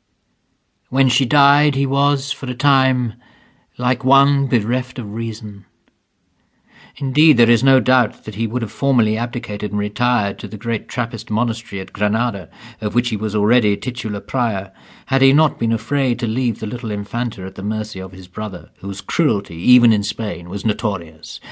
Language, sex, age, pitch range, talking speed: English, male, 50-69, 105-130 Hz, 175 wpm